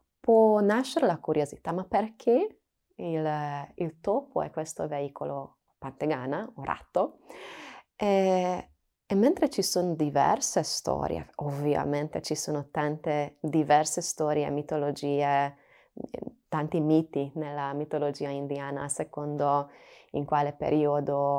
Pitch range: 140-175 Hz